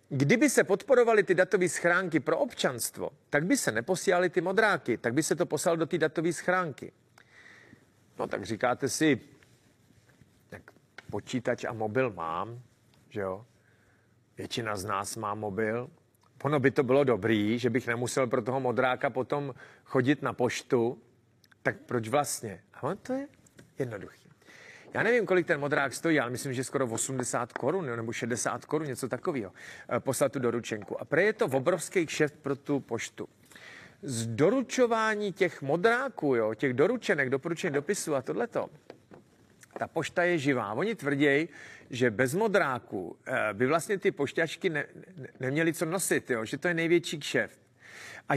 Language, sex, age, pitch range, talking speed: Czech, male, 40-59, 120-175 Hz, 155 wpm